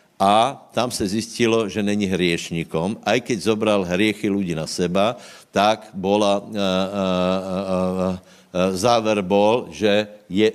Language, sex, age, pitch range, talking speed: Slovak, male, 60-79, 95-110 Hz, 135 wpm